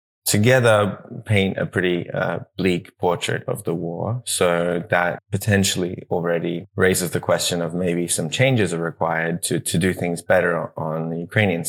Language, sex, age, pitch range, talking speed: English, male, 20-39, 85-110 Hz, 160 wpm